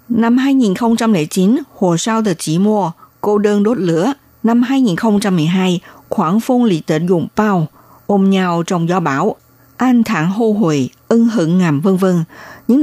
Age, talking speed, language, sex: 60-79, 160 wpm, Vietnamese, female